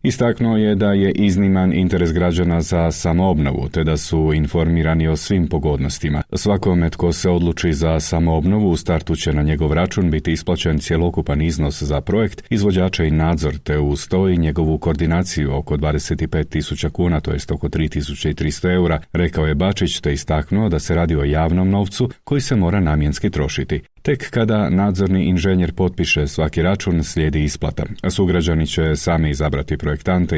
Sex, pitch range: male, 75-90 Hz